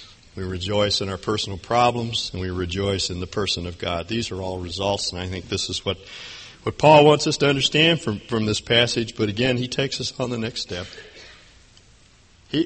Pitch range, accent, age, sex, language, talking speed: 95-135 Hz, American, 50-69, male, English, 210 wpm